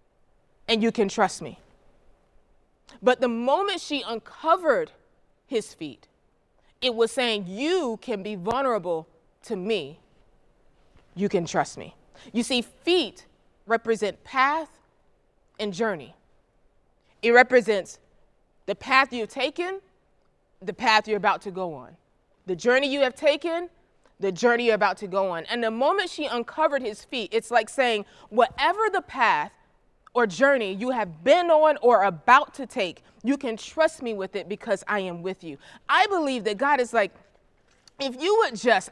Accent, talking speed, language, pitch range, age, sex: American, 155 wpm, English, 215-285 Hz, 20-39, female